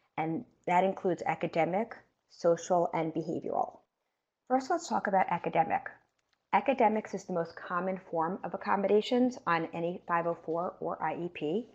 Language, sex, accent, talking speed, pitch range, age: English, female, American, 130 wpm, 165-210 Hz, 40-59